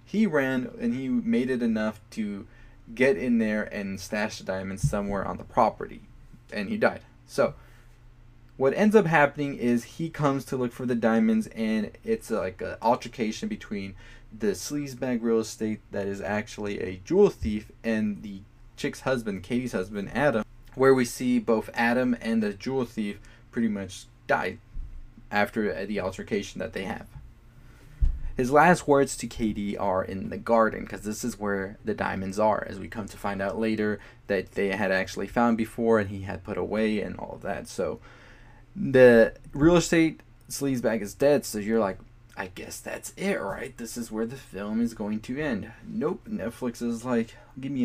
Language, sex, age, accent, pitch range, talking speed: English, male, 20-39, American, 105-125 Hz, 180 wpm